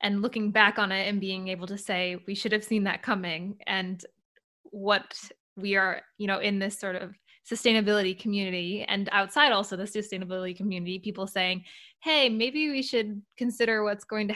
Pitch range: 185-215 Hz